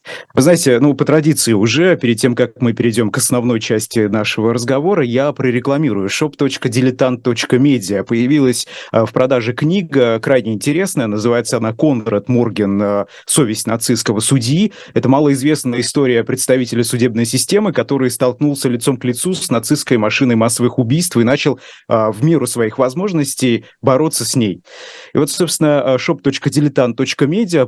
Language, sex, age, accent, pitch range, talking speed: Russian, male, 30-49, native, 115-140 Hz, 130 wpm